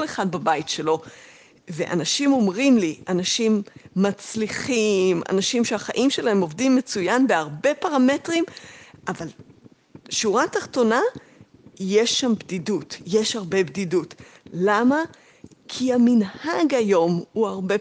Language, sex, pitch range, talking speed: Hebrew, female, 190-290 Hz, 100 wpm